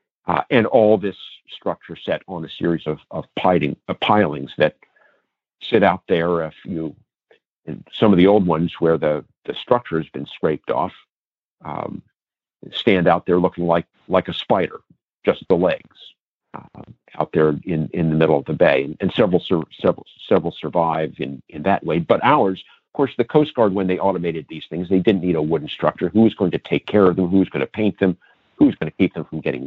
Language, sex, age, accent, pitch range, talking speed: English, male, 50-69, American, 80-95 Hz, 210 wpm